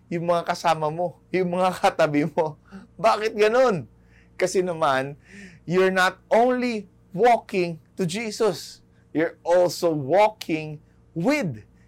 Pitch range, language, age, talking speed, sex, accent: 135-200 Hz, English, 20-39, 110 wpm, male, Filipino